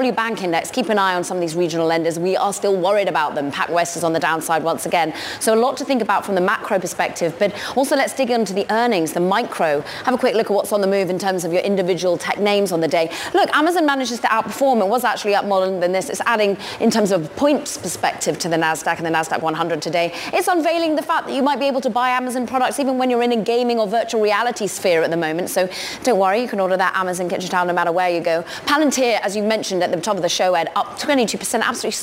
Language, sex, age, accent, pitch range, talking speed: English, female, 20-39, British, 175-225 Hz, 275 wpm